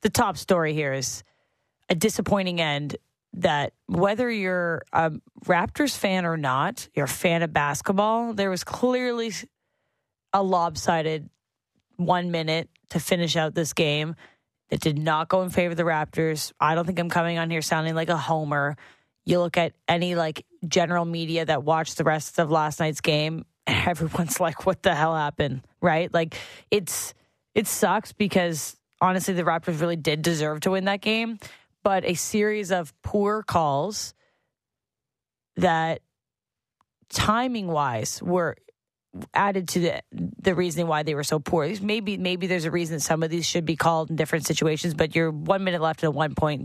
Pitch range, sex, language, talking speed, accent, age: 160-185 Hz, female, English, 170 wpm, American, 20-39